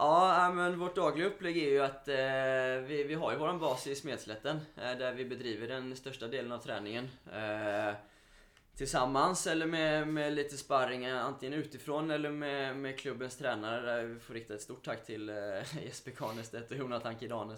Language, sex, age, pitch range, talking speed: Swedish, male, 20-39, 105-130 Hz, 180 wpm